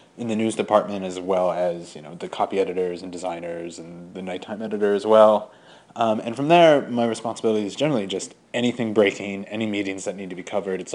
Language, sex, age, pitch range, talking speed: English, male, 30-49, 95-110 Hz, 215 wpm